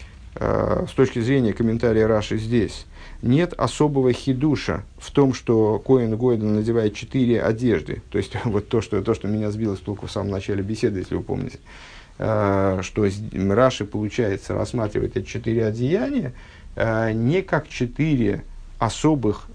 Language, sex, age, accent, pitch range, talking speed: Russian, male, 50-69, native, 100-120 Hz, 140 wpm